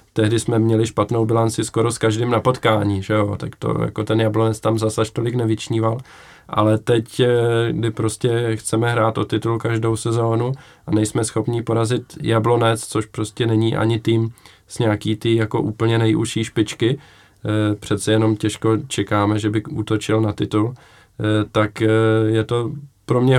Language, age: Czech, 20-39